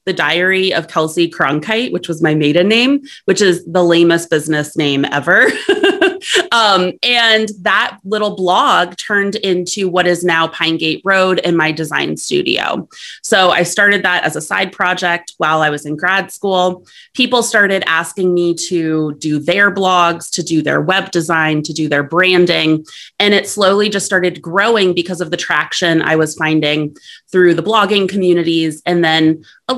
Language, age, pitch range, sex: English, 30-49, 165-200 Hz, female